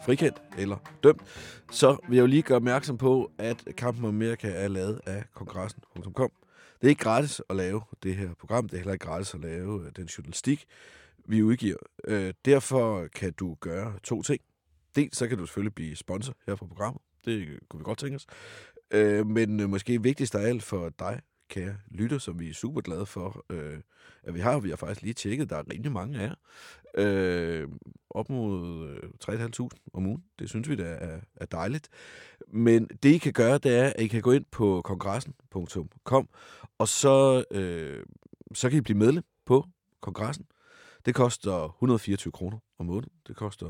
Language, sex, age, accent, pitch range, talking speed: Danish, male, 30-49, native, 95-125 Hz, 185 wpm